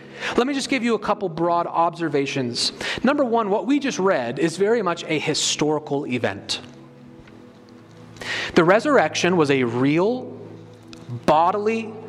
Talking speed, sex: 135 wpm, male